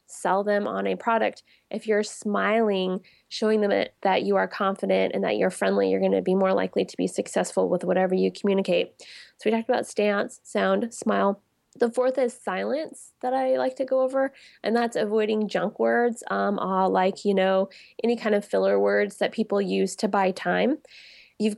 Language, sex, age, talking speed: English, female, 20-39, 190 wpm